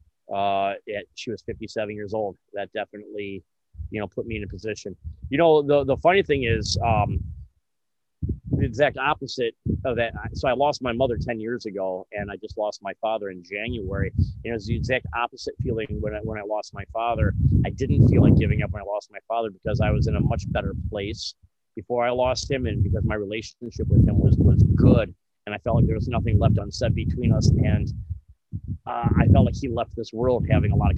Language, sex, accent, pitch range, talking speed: English, male, American, 100-120 Hz, 225 wpm